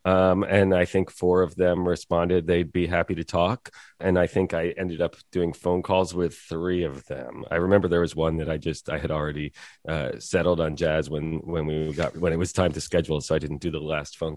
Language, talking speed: English, 240 wpm